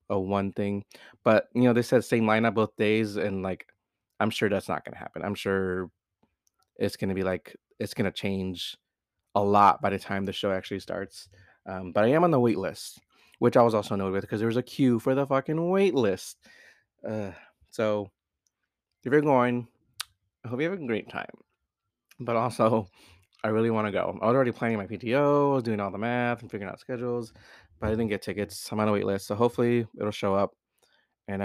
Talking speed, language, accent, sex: 215 wpm, English, American, male